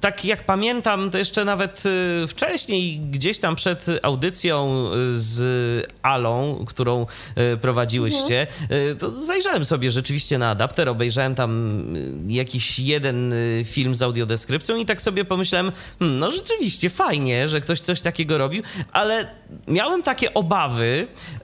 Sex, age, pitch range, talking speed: male, 30-49, 125-185 Hz, 125 wpm